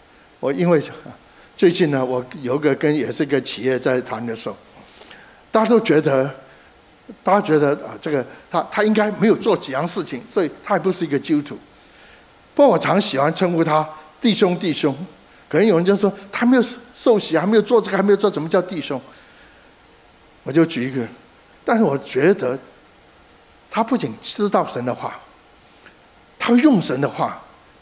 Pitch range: 140-210 Hz